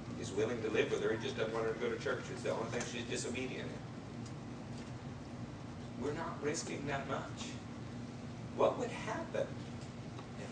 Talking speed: 170 wpm